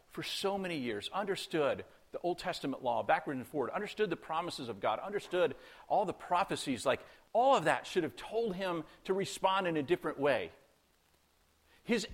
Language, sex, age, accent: English, male, 50-69, American